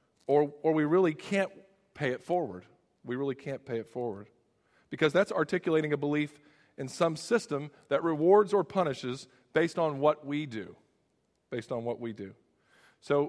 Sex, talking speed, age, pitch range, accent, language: male, 165 wpm, 40-59, 125-160 Hz, American, English